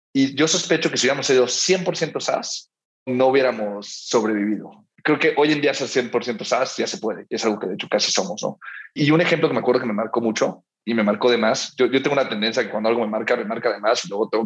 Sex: male